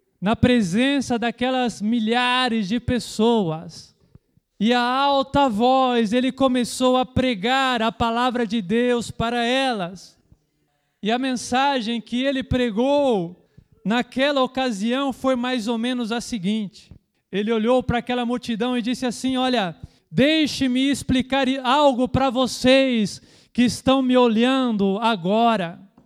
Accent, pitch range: Brazilian, 230-280 Hz